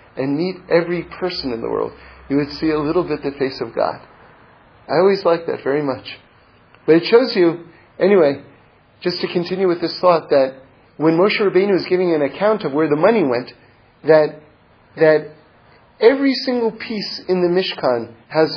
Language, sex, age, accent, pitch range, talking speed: English, male, 40-59, American, 130-185 Hz, 180 wpm